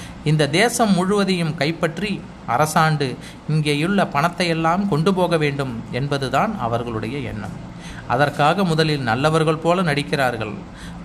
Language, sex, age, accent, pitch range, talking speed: Tamil, male, 30-49, native, 135-170 Hz, 105 wpm